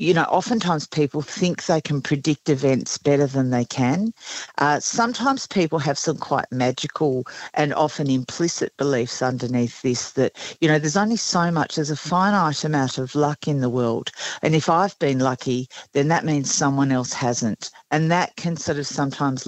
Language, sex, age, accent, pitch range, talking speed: English, female, 50-69, Australian, 130-170 Hz, 180 wpm